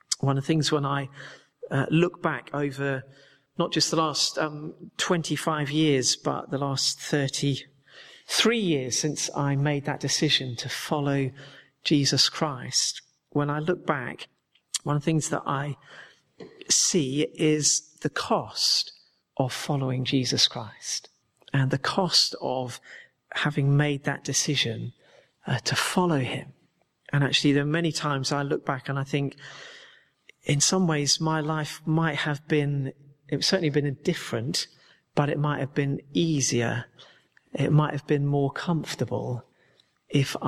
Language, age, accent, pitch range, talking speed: English, 40-59, British, 135-155 Hz, 150 wpm